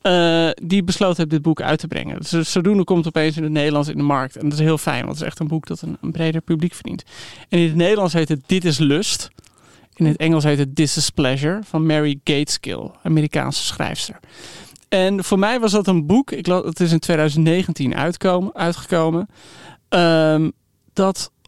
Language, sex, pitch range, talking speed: Dutch, male, 155-180 Hz, 210 wpm